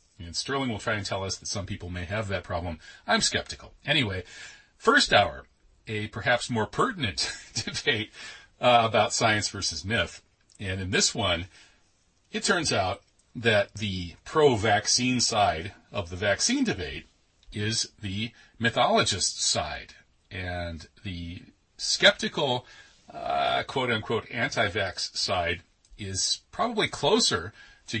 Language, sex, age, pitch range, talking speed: English, male, 40-59, 100-120 Hz, 125 wpm